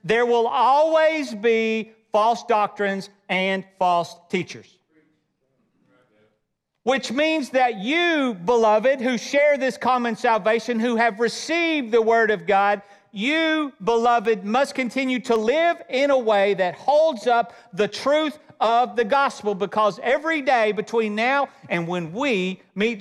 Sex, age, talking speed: male, 50-69, 135 wpm